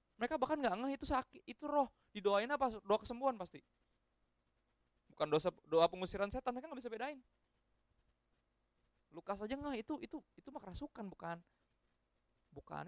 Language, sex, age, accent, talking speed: Indonesian, male, 20-39, native, 150 wpm